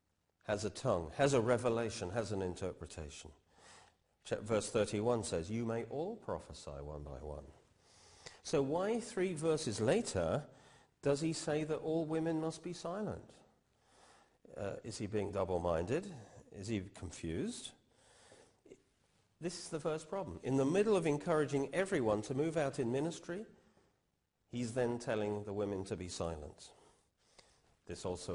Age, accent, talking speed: 40-59, British, 140 wpm